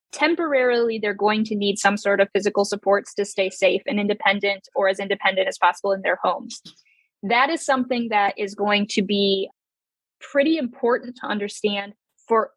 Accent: American